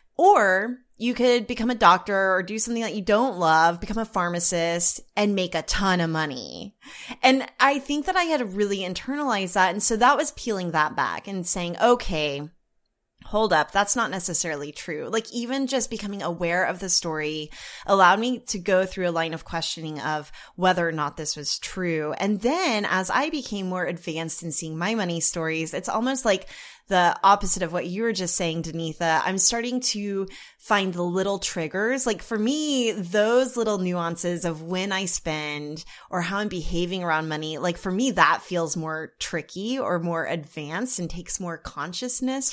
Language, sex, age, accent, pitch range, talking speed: English, female, 20-39, American, 170-230 Hz, 190 wpm